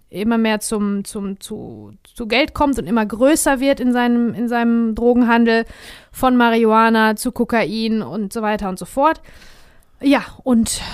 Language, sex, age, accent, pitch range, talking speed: German, female, 30-49, German, 215-255 Hz, 160 wpm